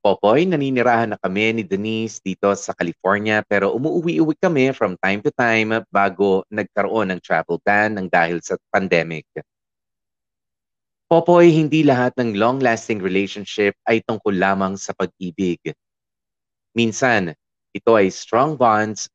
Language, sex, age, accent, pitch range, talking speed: Filipino, male, 30-49, native, 95-125 Hz, 130 wpm